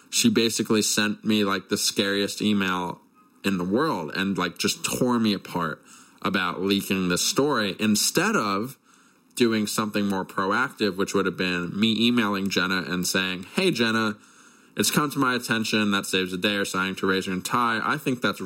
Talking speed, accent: 180 wpm, American